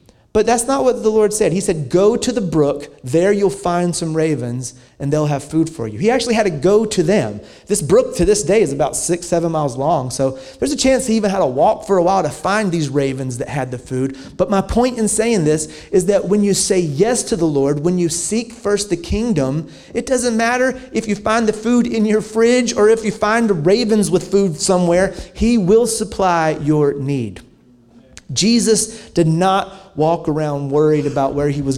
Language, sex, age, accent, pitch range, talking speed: English, male, 30-49, American, 140-205 Hz, 225 wpm